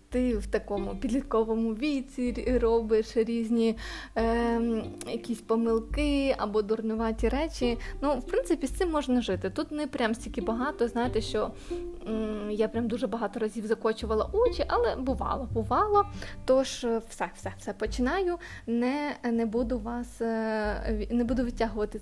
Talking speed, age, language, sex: 135 wpm, 20-39, Ukrainian, female